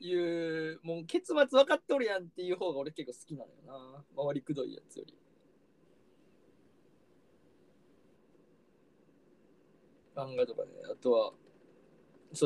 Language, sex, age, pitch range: Japanese, male, 20-39, 165-260 Hz